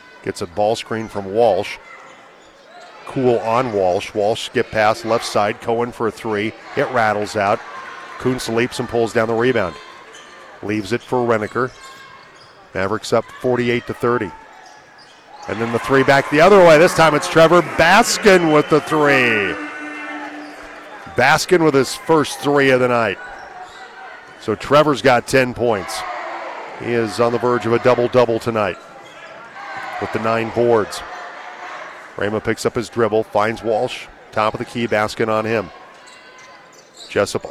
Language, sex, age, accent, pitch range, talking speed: English, male, 40-59, American, 110-130 Hz, 150 wpm